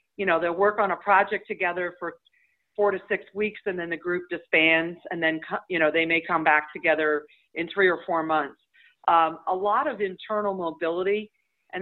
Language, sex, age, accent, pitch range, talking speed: English, female, 50-69, American, 160-195 Hz, 200 wpm